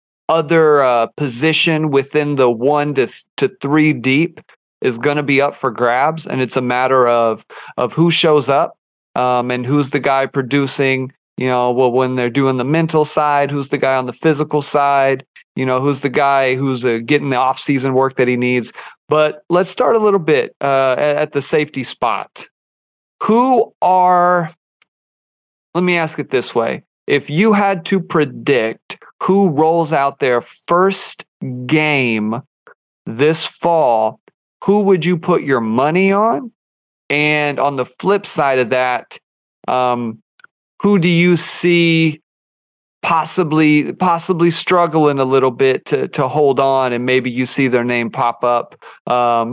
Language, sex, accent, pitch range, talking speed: English, male, American, 130-165 Hz, 165 wpm